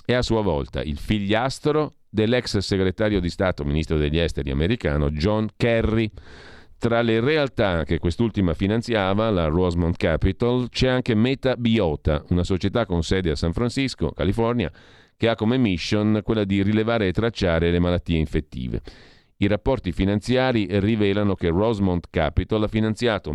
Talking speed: 145 wpm